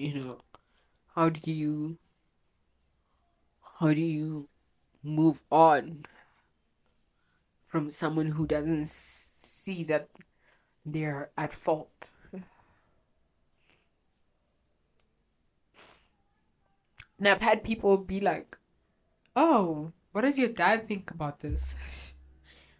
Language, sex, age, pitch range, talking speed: English, female, 20-39, 145-175 Hz, 85 wpm